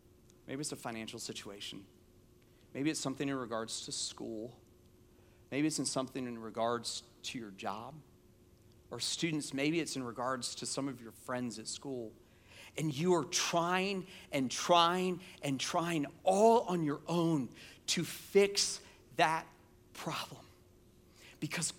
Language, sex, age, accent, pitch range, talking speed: English, male, 40-59, American, 120-170 Hz, 140 wpm